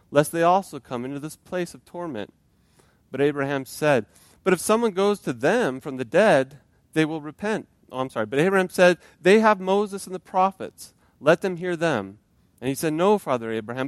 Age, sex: 30-49, male